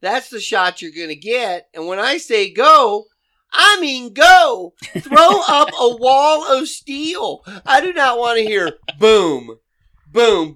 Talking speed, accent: 165 wpm, American